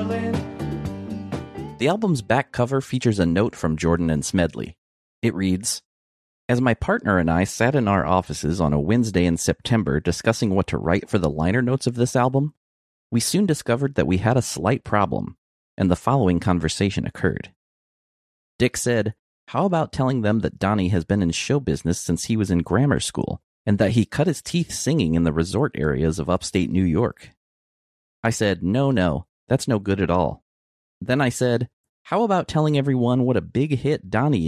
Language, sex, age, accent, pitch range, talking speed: English, male, 40-59, American, 85-125 Hz, 185 wpm